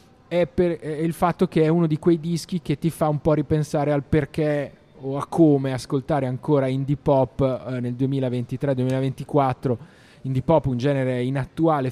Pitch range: 120-145 Hz